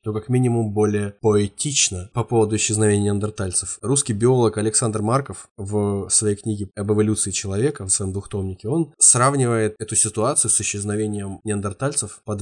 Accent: native